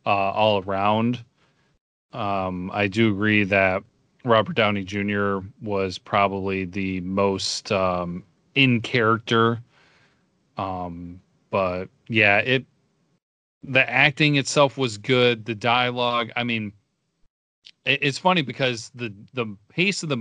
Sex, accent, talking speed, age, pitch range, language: male, American, 115 wpm, 30-49, 105-125 Hz, English